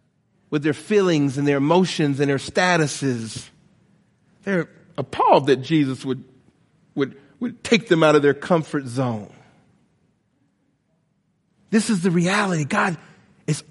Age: 40-59